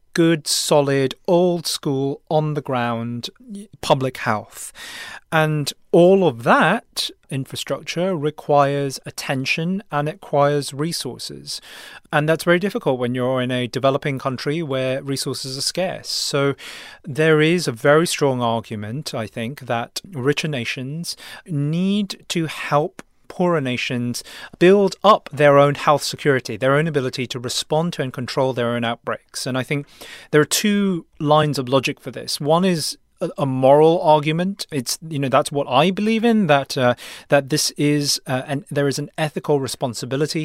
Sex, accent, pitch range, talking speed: male, British, 130-165 Hz, 155 wpm